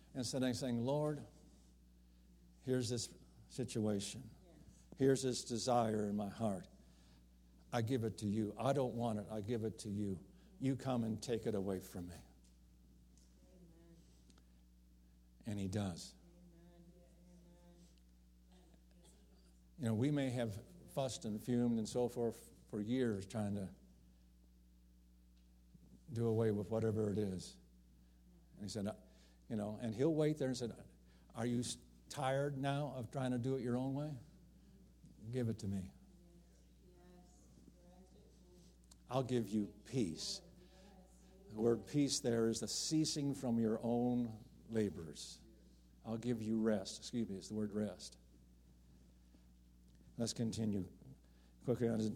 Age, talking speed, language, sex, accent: 60-79, 130 wpm, English, male, American